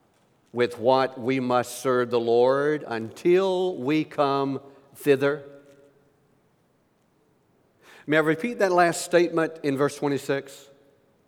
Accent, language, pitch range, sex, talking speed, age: American, English, 140-180 Hz, male, 105 wpm, 60-79